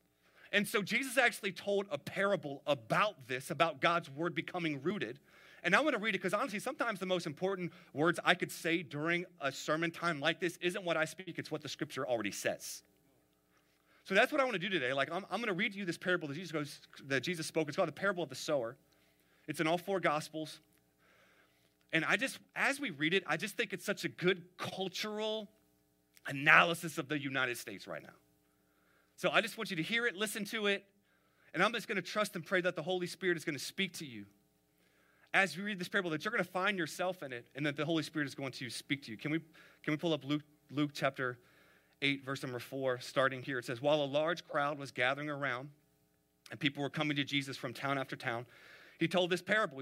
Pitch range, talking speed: 135-185 Hz, 230 wpm